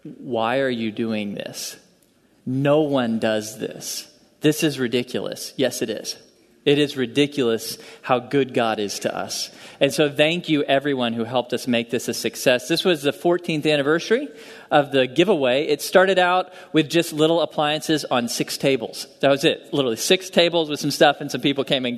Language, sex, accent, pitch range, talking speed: English, male, American, 135-175 Hz, 185 wpm